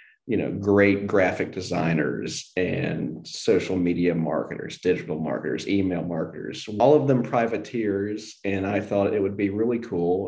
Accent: American